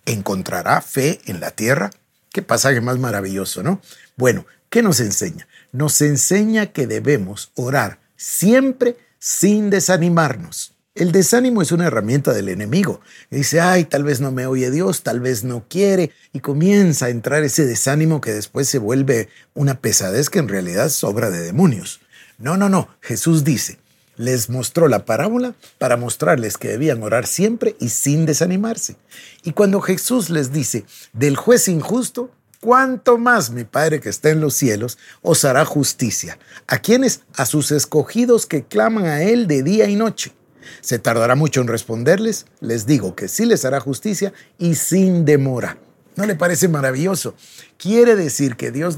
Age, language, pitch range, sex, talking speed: 50-69, Spanish, 130-195 Hz, male, 165 wpm